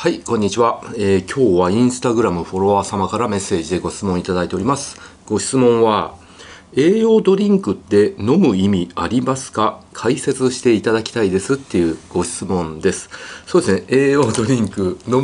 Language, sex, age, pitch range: Japanese, male, 40-59, 95-135 Hz